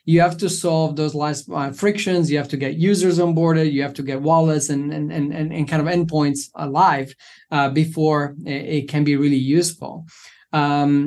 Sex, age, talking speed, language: male, 20-39, 195 wpm, English